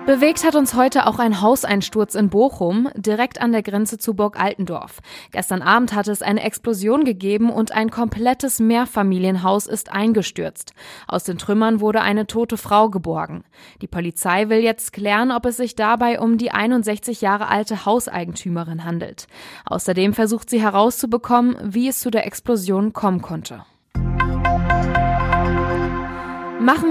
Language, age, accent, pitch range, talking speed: German, 20-39, German, 200-240 Hz, 145 wpm